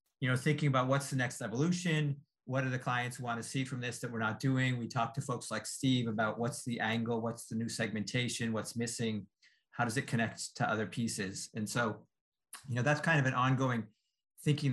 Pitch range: 110-130 Hz